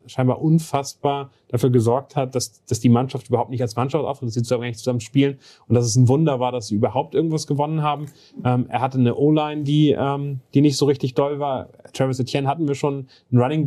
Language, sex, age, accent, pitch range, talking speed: German, male, 30-49, German, 120-140 Hz, 230 wpm